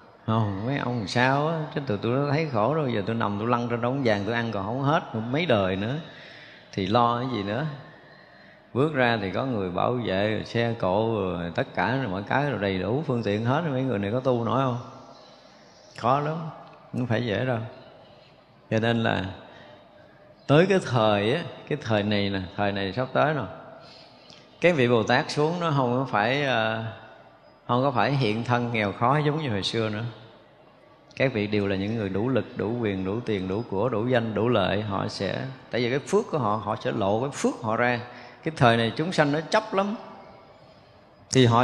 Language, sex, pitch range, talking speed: Vietnamese, male, 105-140 Hz, 220 wpm